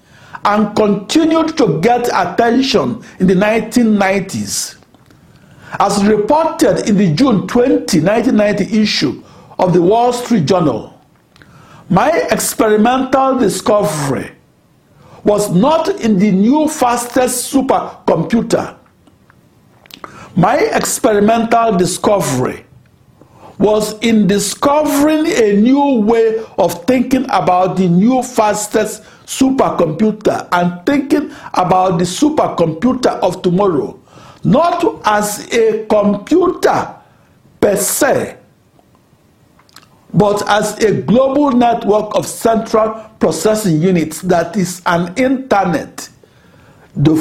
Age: 60-79